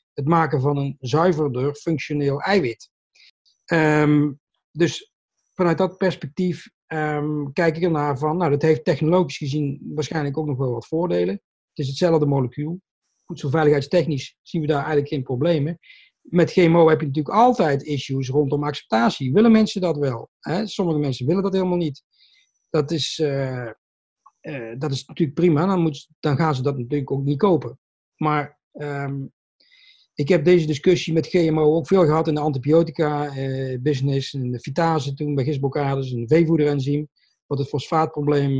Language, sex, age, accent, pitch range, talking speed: Dutch, male, 40-59, Dutch, 140-165 Hz, 160 wpm